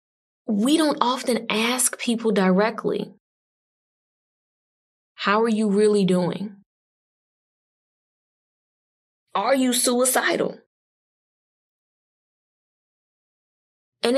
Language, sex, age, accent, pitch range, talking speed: English, female, 20-39, American, 180-225 Hz, 65 wpm